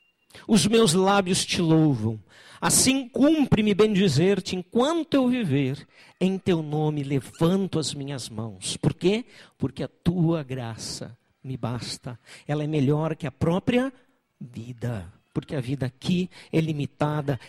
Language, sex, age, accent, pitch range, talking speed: Portuguese, male, 50-69, Brazilian, 145-235 Hz, 135 wpm